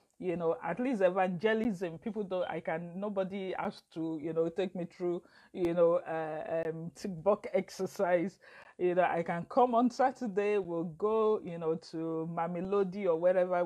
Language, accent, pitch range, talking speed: English, Nigerian, 165-200 Hz, 165 wpm